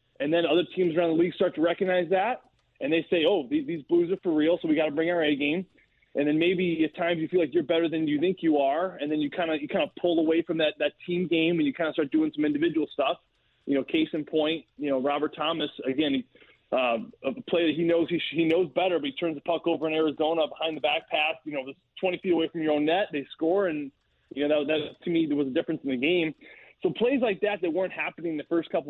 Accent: American